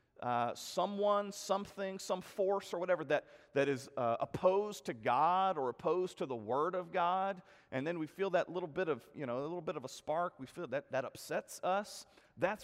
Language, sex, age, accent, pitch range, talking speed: English, male, 40-59, American, 150-195 Hz, 210 wpm